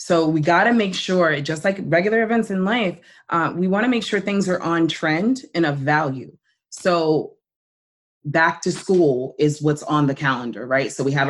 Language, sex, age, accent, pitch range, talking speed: English, female, 20-39, American, 145-175 Hz, 200 wpm